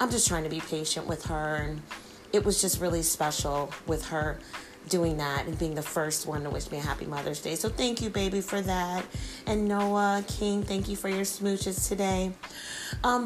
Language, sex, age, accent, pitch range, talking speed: English, female, 30-49, American, 165-205 Hz, 205 wpm